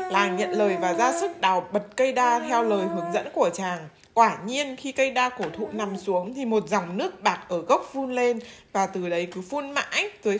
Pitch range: 195-275 Hz